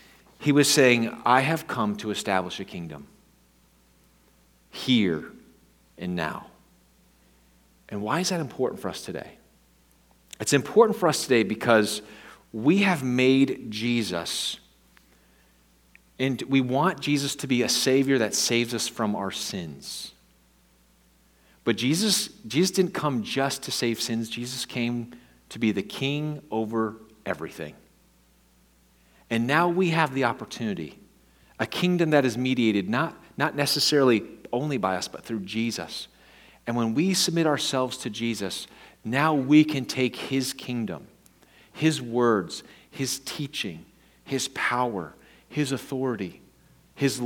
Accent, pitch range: American, 90-140 Hz